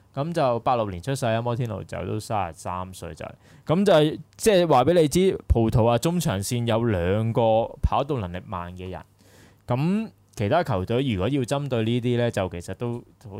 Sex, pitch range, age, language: male, 95-125 Hz, 20-39, Chinese